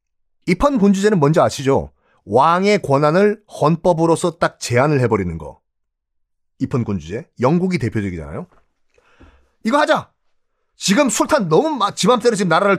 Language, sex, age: Korean, male, 40-59